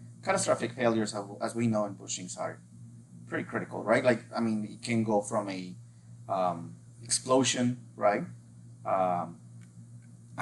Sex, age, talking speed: male, 30-49, 130 wpm